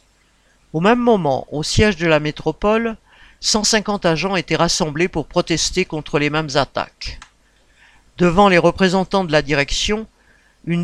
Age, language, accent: 50-69, French, French